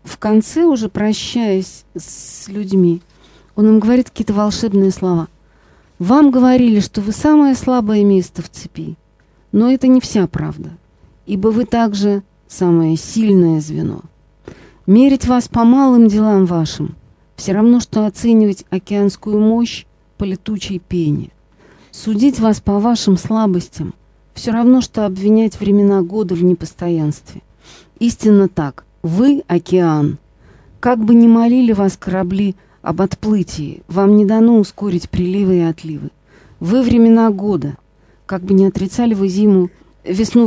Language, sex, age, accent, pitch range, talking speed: Russian, female, 40-59, native, 175-220 Hz, 130 wpm